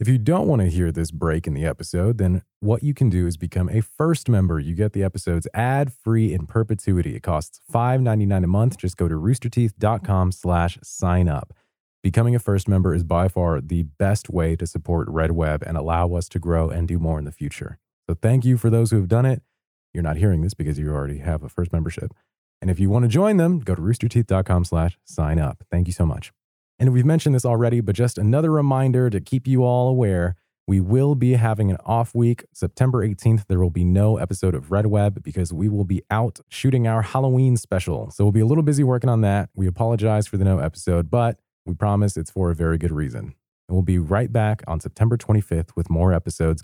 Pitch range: 85-115 Hz